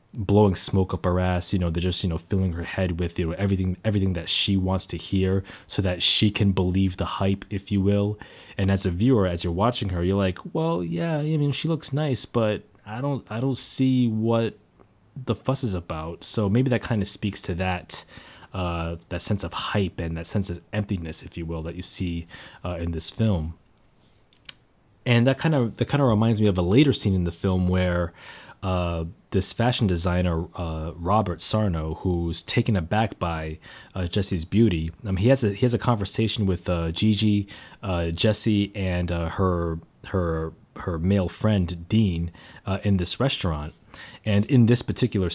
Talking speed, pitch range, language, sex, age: 200 wpm, 90-110 Hz, English, male, 20-39